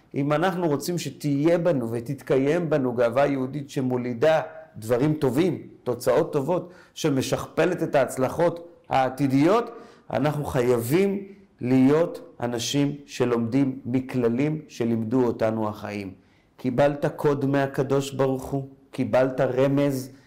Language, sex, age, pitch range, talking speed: Hebrew, male, 40-59, 120-155 Hz, 100 wpm